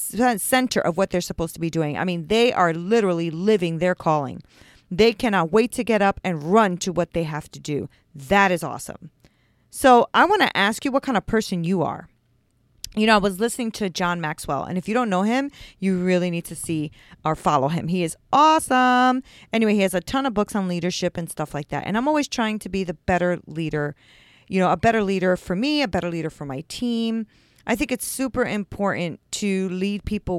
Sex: female